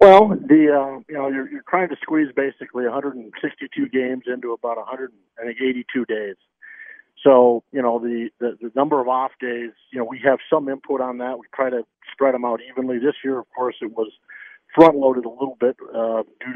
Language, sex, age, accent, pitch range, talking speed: English, male, 50-69, American, 120-140 Hz, 200 wpm